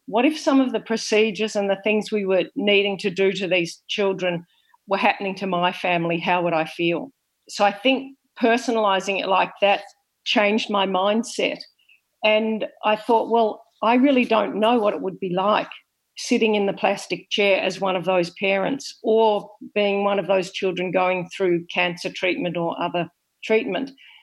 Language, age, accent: English, 50-69, Australian